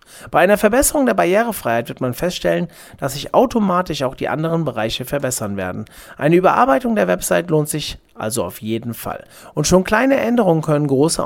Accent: German